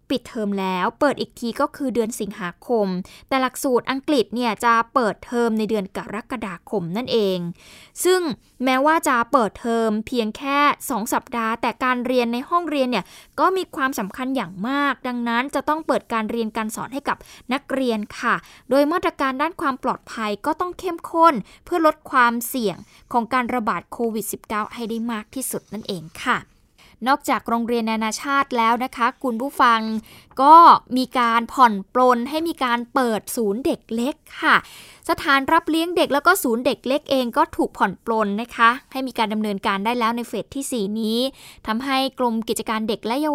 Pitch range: 225-275 Hz